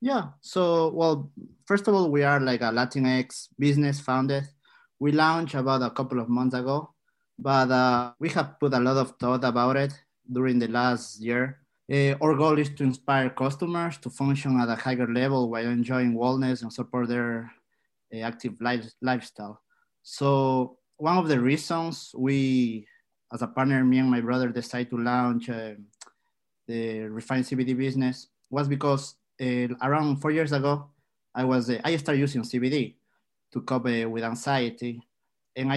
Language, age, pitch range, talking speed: English, 30-49, 120-140 Hz, 170 wpm